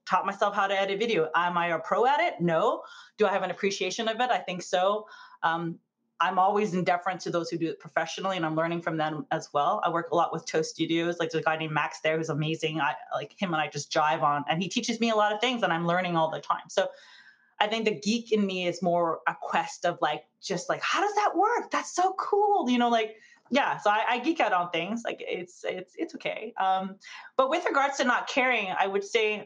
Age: 30-49